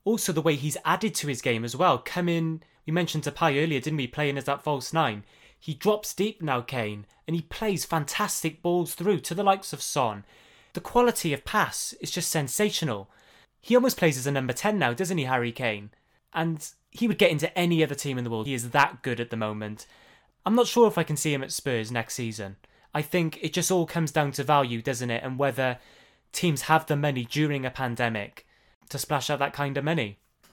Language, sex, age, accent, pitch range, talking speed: English, male, 20-39, British, 130-170 Hz, 230 wpm